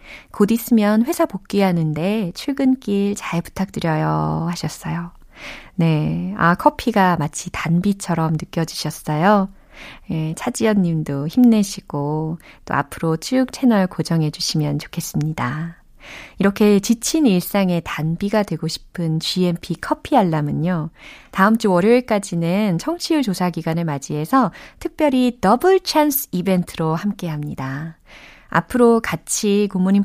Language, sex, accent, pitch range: Korean, female, native, 160-230 Hz